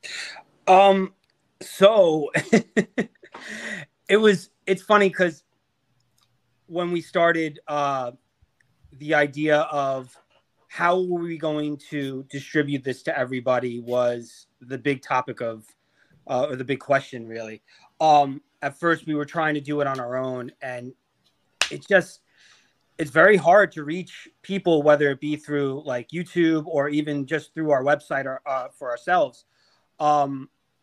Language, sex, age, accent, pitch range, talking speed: English, male, 30-49, American, 135-170 Hz, 140 wpm